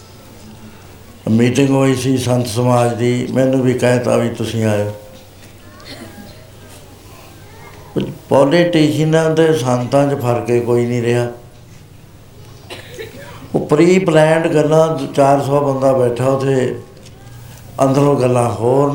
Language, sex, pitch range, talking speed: Punjabi, male, 115-135 Hz, 95 wpm